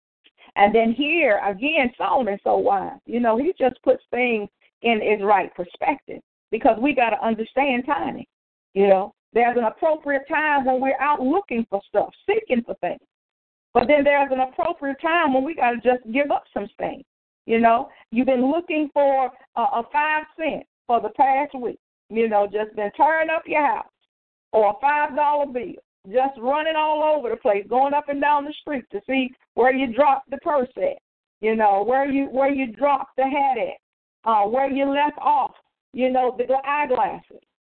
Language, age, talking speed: English, 50-69, 190 wpm